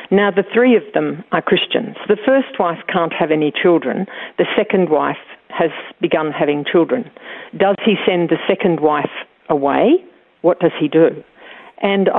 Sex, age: female, 50-69